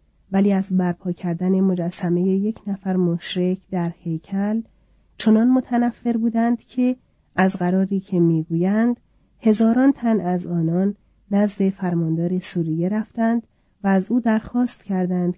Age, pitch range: 40-59, 175-220 Hz